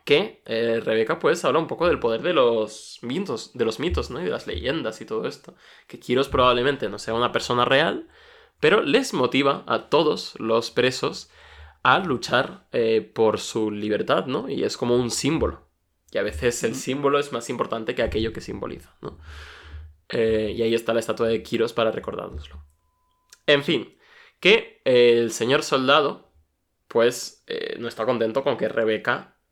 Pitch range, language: 110-125 Hz, Spanish